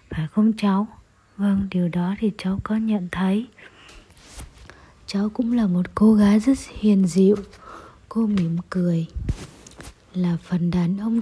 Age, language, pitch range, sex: 20-39, Japanese, 170-215 Hz, female